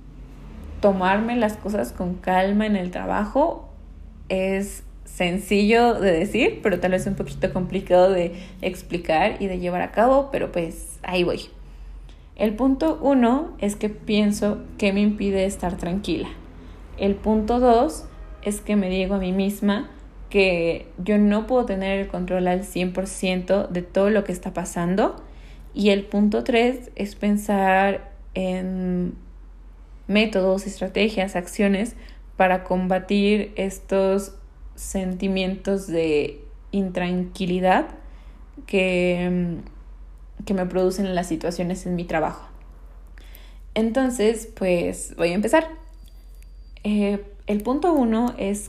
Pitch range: 180-205 Hz